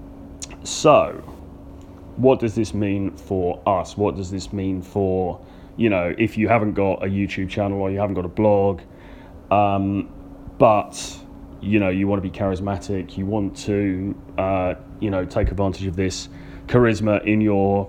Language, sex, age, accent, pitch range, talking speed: English, male, 30-49, British, 90-110 Hz, 165 wpm